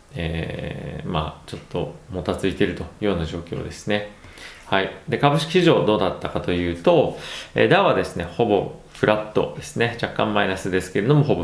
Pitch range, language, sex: 90-115 Hz, Japanese, male